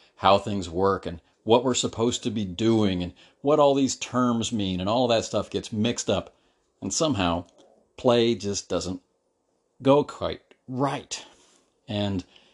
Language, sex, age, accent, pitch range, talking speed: English, male, 50-69, American, 90-125 Hz, 155 wpm